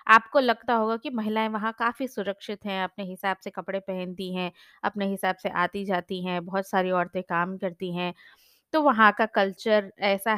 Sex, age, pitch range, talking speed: female, 20-39, 190-250 Hz, 185 wpm